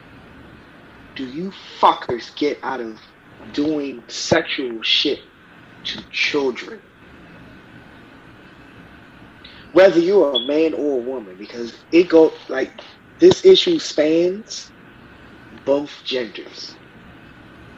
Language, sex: English, male